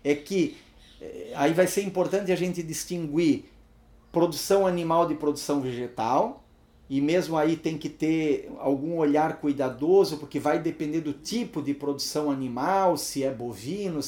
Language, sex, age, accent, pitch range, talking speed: Portuguese, male, 40-59, Brazilian, 145-195 Hz, 145 wpm